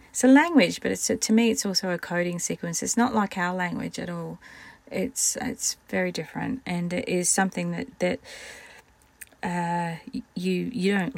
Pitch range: 165-200 Hz